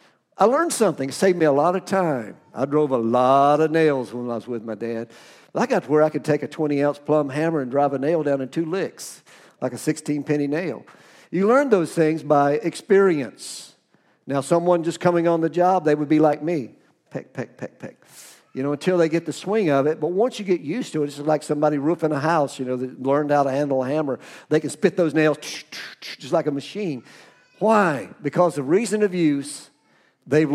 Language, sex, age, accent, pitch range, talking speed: English, male, 50-69, American, 145-175 Hz, 225 wpm